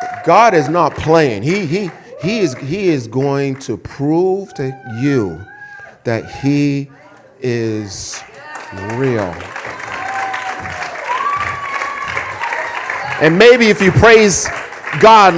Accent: American